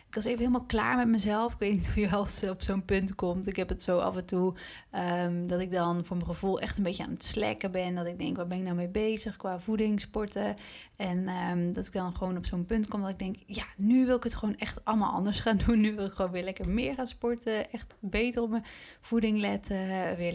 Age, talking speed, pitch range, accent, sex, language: 20-39, 265 wpm, 185-220 Hz, Dutch, female, Dutch